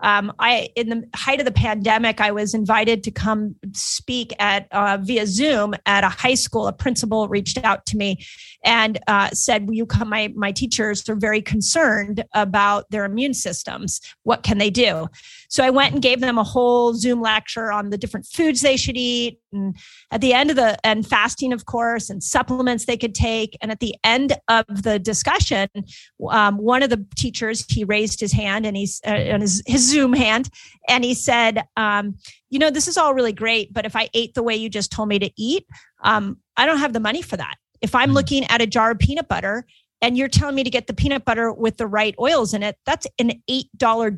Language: English